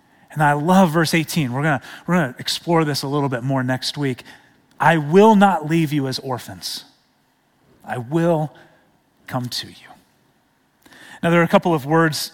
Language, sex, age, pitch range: English, male, 30-49, 165-205 Hz